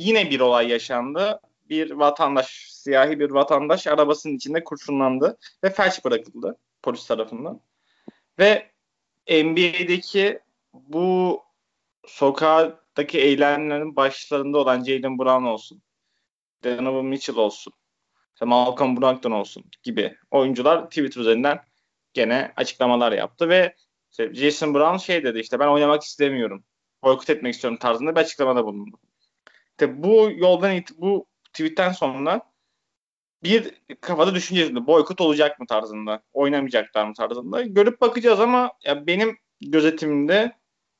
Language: Turkish